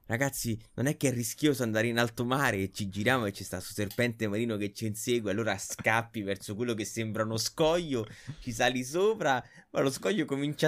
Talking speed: 210 wpm